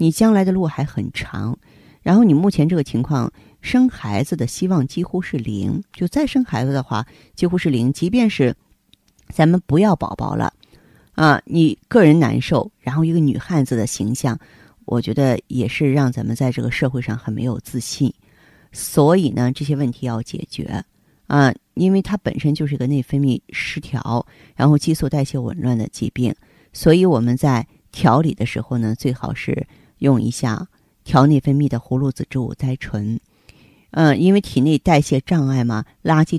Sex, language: female, Chinese